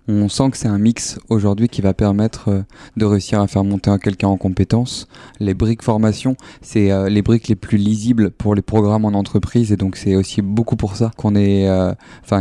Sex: male